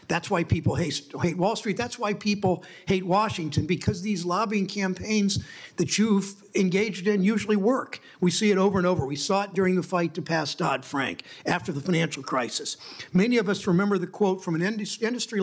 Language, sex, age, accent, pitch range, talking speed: English, male, 60-79, American, 165-195 Hz, 195 wpm